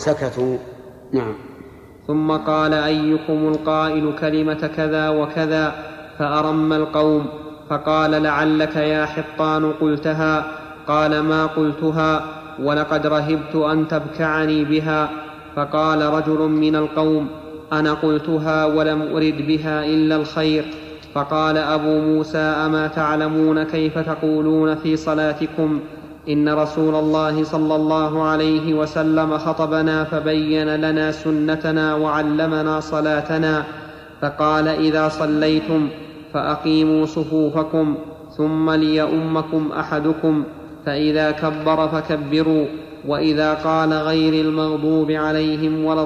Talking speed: 95 wpm